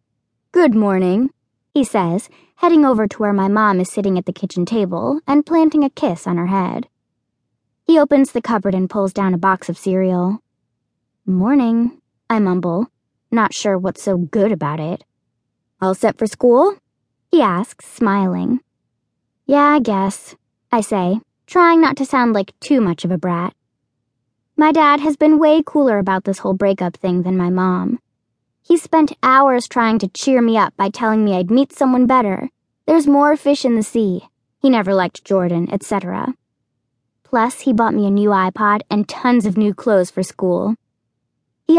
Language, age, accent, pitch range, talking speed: English, 10-29, American, 190-270 Hz, 175 wpm